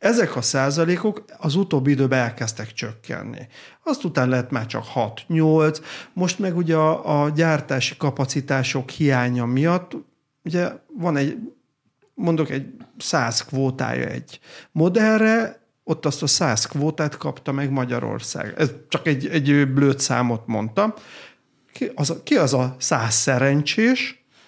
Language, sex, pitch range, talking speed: Hungarian, male, 135-160 Hz, 125 wpm